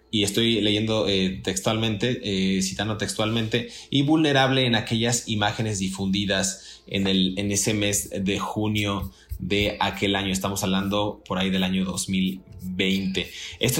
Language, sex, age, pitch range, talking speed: Spanish, male, 30-49, 100-120 Hz, 135 wpm